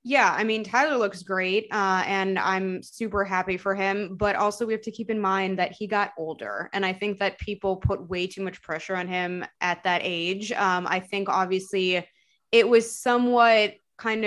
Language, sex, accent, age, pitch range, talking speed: English, female, American, 20-39, 190-230 Hz, 200 wpm